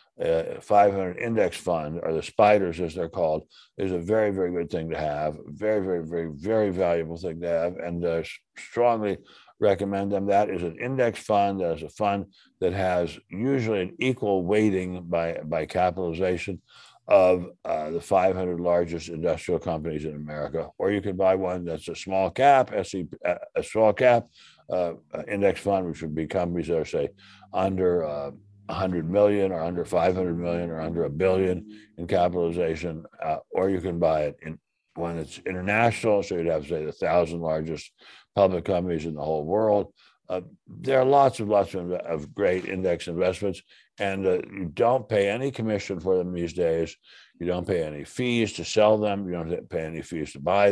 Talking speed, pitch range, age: 180 wpm, 85-100 Hz, 60-79